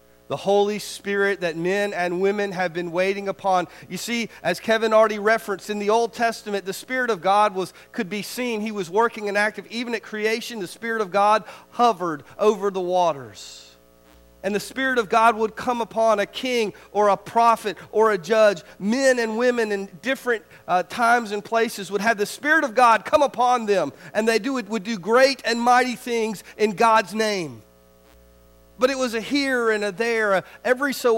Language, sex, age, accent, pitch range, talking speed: English, male, 40-59, American, 185-235 Hz, 195 wpm